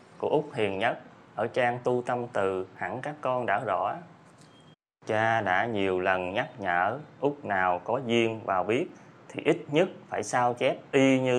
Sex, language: male, Vietnamese